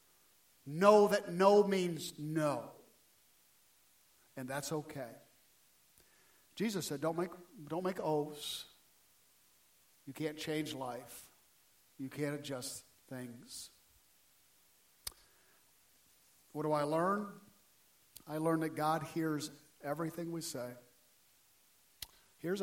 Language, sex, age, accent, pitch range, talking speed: English, male, 50-69, American, 140-175 Hz, 95 wpm